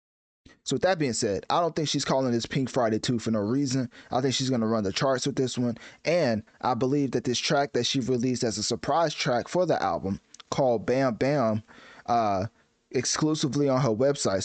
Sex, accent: male, American